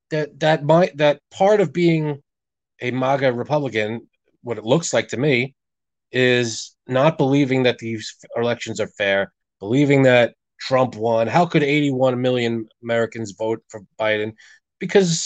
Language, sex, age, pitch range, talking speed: English, male, 20-39, 115-140 Hz, 150 wpm